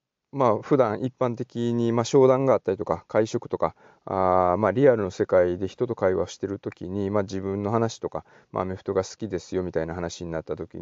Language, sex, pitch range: Japanese, male, 90-120 Hz